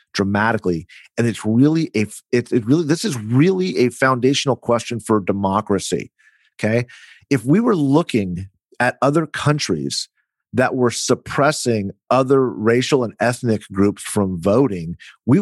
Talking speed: 130 wpm